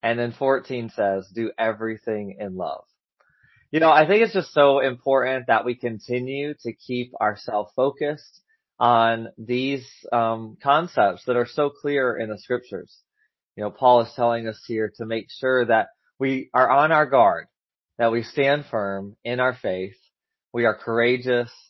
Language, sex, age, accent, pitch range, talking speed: English, male, 30-49, American, 115-140 Hz, 165 wpm